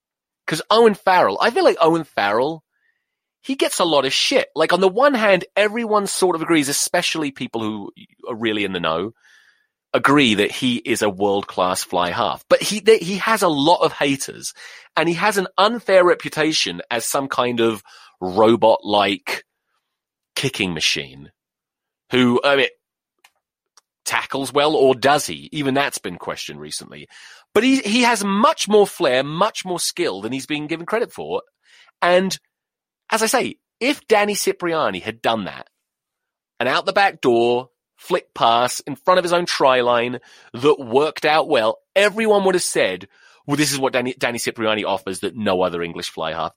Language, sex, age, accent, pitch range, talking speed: English, male, 30-49, British, 120-205 Hz, 175 wpm